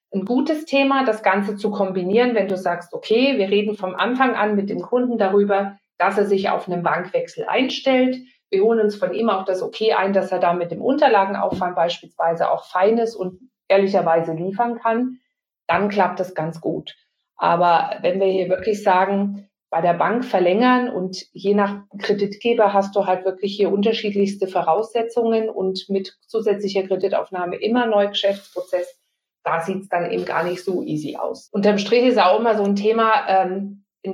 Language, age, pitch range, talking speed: German, 50-69, 185-225 Hz, 180 wpm